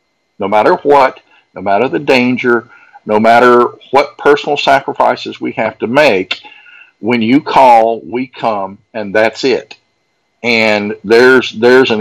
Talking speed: 140 wpm